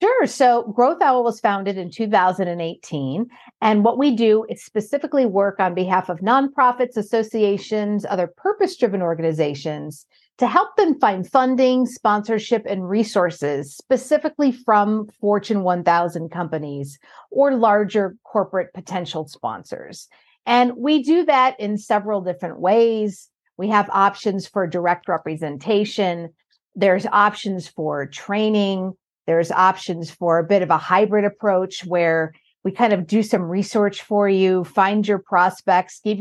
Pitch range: 175-225 Hz